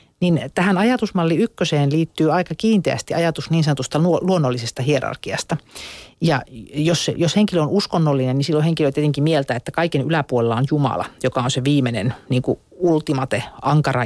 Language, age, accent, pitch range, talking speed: Finnish, 40-59, native, 135-165 Hz, 155 wpm